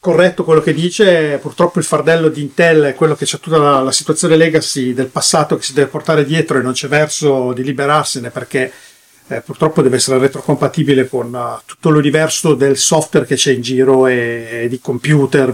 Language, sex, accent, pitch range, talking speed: Italian, male, native, 135-165 Hz, 195 wpm